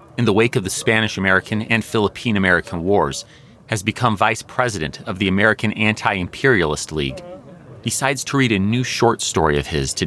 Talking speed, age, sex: 165 wpm, 30-49, male